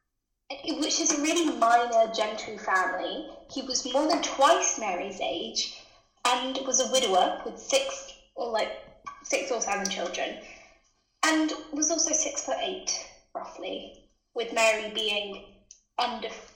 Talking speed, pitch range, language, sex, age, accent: 135 wpm, 225-335 Hz, English, female, 10-29, British